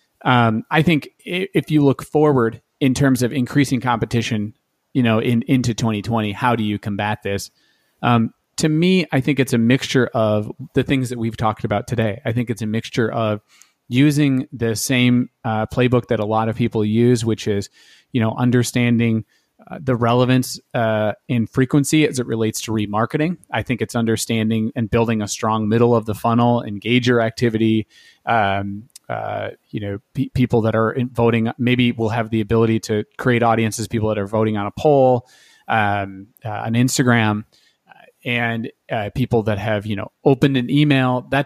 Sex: male